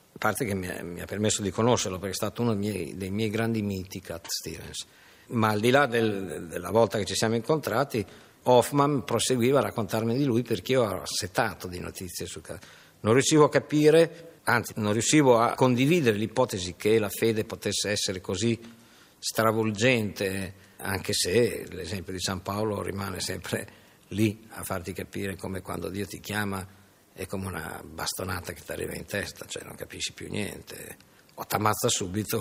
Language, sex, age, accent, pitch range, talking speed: Italian, male, 50-69, native, 95-115 Hz, 180 wpm